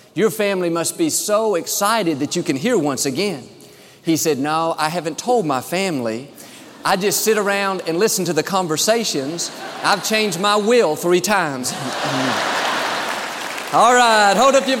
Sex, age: male, 40-59